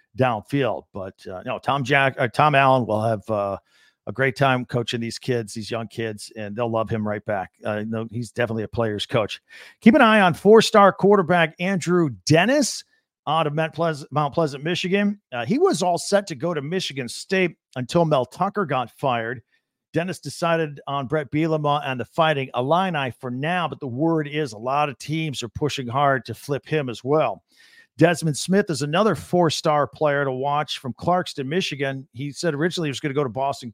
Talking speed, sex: 200 wpm, male